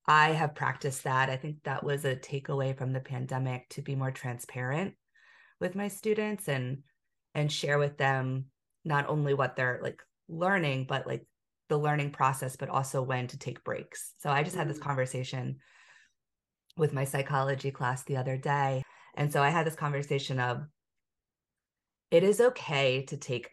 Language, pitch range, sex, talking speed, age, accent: English, 130-150 Hz, female, 170 wpm, 30-49, American